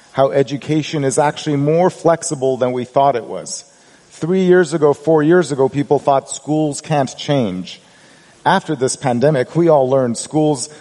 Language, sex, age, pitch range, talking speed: English, male, 40-59, 125-155 Hz, 160 wpm